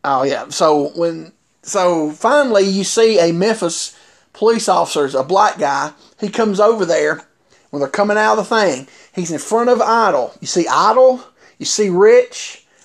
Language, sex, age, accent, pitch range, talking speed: English, male, 30-49, American, 170-240 Hz, 175 wpm